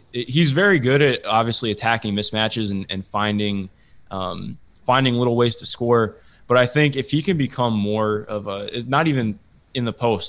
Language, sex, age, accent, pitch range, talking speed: English, male, 20-39, American, 100-125 Hz, 175 wpm